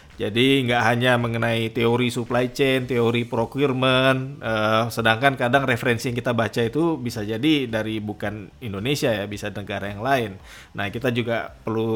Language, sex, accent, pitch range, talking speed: English, male, Indonesian, 110-135 Hz, 155 wpm